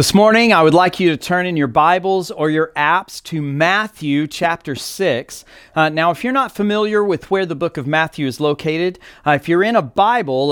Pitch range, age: 155-200 Hz, 40-59